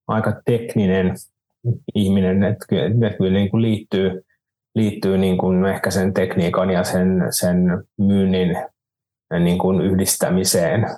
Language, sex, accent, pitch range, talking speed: Finnish, male, native, 90-95 Hz, 110 wpm